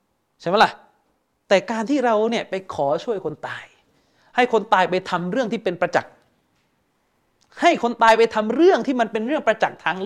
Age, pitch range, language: 30-49, 190-255 Hz, Thai